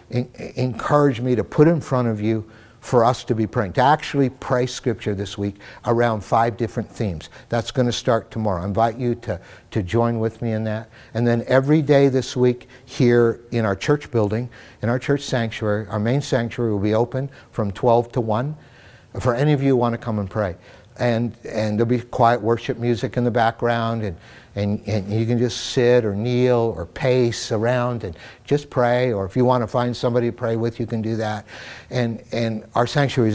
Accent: American